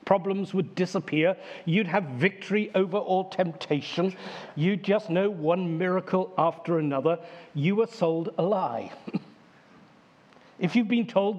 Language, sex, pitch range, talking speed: English, male, 170-205 Hz, 130 wpm